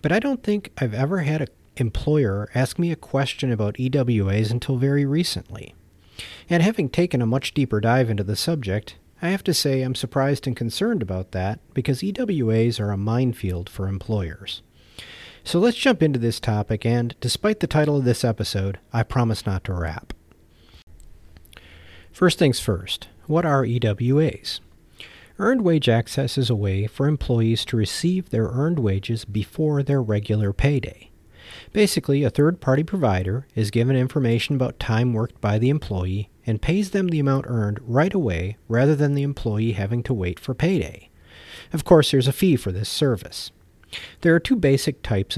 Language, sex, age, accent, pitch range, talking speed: English, male, 40-59, American, 105-140 Hz, 170 wpm